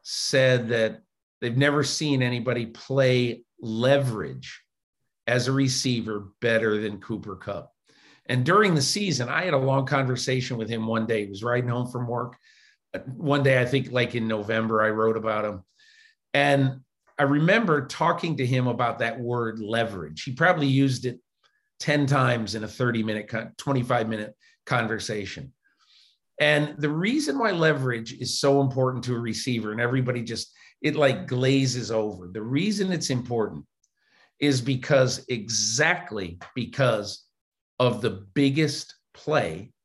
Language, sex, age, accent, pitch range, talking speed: English, male, 50-69, American, 115-145 Hz, 150 wpm